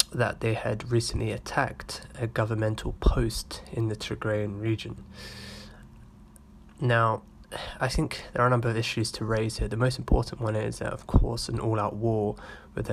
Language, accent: English, British